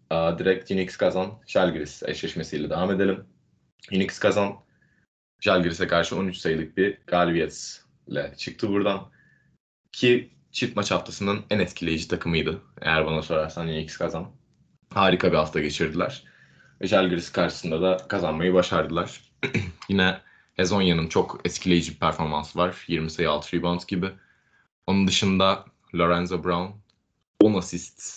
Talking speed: 120 wpm